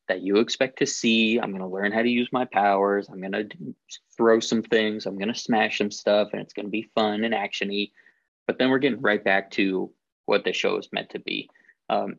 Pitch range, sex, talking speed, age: 100-115 Hz, male, 220 wpm, 20-39